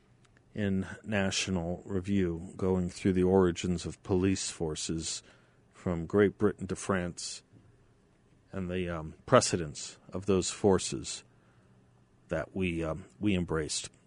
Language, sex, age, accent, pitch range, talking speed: English, male, 50-69, American, 85-105 Hz, 115 wpm